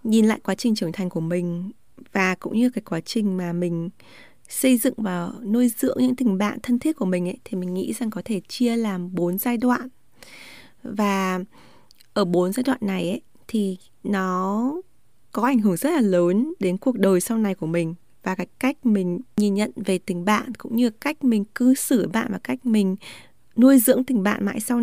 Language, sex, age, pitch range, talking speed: Vietnamese, female, 20-39, 190-245 Hz, 210 wpm